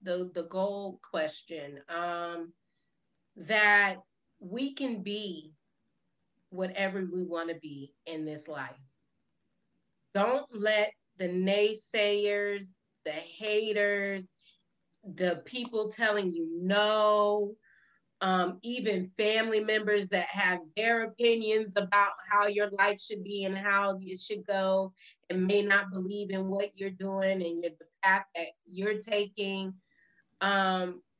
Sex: female